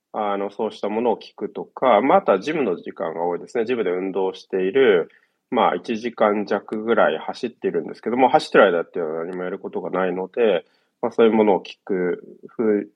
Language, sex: Japanese, male